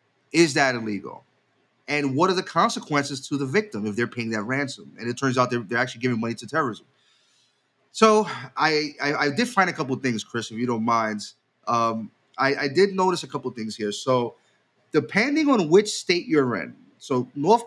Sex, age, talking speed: male, 30-49, 205 wpm